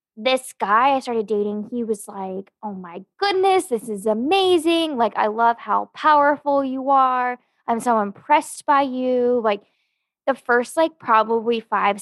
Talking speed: 160 wpm